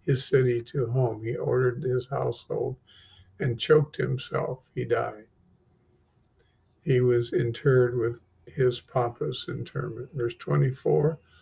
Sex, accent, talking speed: male, American, 115 wpm